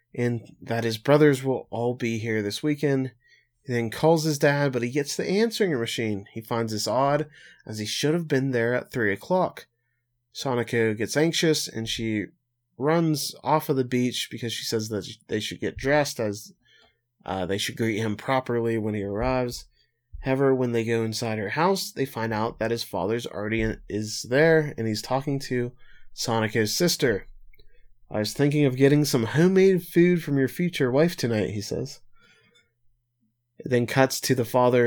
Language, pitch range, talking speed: English, 115-145 Hz, 180 wpm